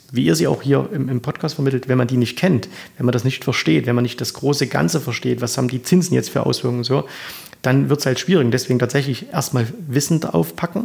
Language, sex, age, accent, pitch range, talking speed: German, male, 30-49, German, 125-145 Hz, 245 wpm